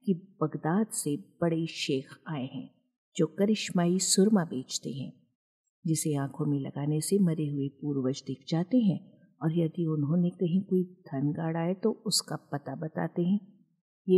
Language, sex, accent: Hindi, female, native